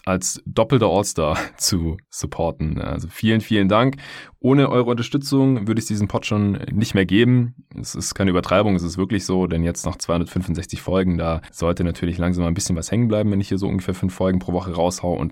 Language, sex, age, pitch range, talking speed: German, male, 20-39, 85-115 Hz, 210 wpm